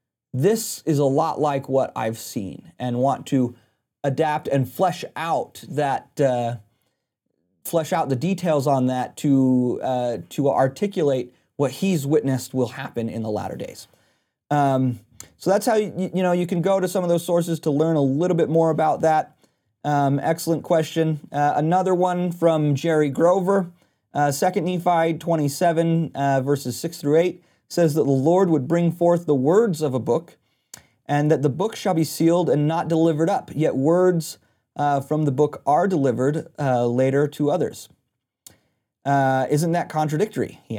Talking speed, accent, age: 170 wpm, American, 30-49